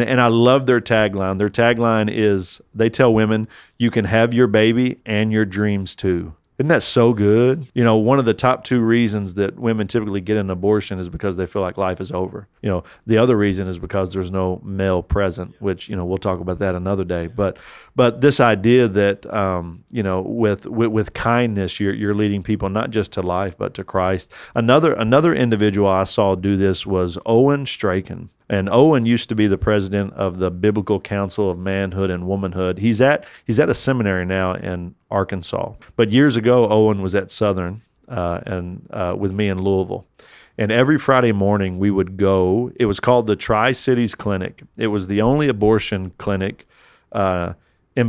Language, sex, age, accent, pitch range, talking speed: English, male, 40-59, American, 95-115 Hz, 200 wpm